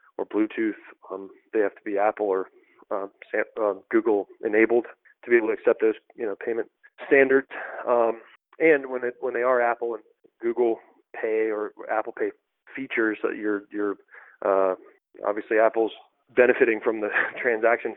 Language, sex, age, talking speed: English, male, 30-49, 165 wpm